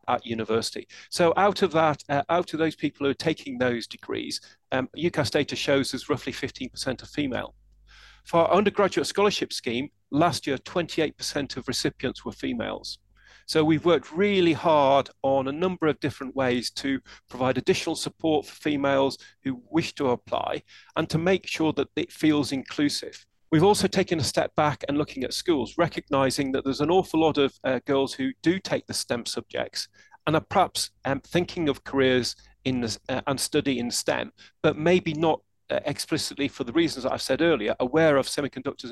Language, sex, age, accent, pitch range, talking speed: English, male, 40-59, British, 130-165 Hz, 185 wpm